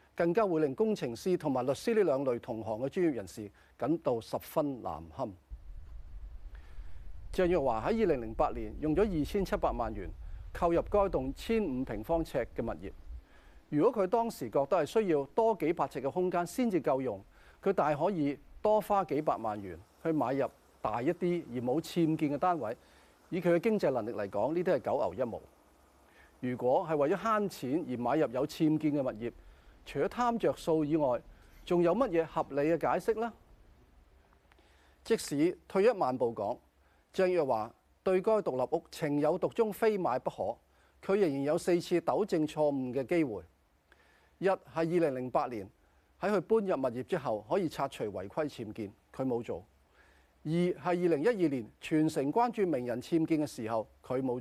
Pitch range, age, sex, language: 115-180 Hz, 40-59, male, Chinese